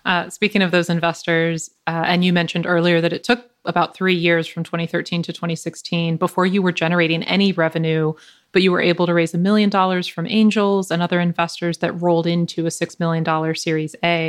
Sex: female